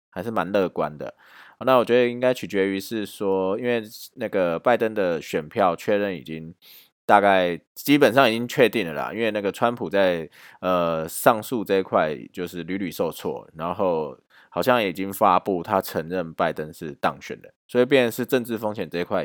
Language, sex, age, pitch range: Chinese, male, 20-39, 80-115 Hz